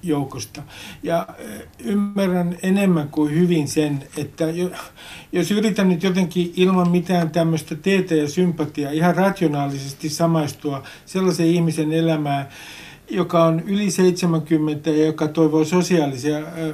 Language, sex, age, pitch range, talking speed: Finnish, male, 50-69, 155-185 Hz, 115 wpm